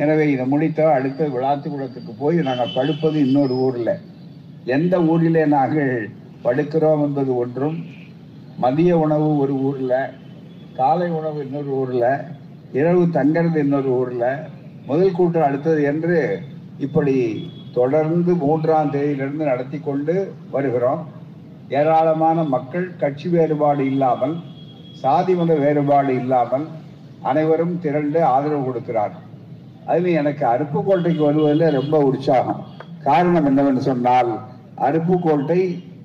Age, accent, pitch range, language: 50-69, native, 140-165 Hz, Tamil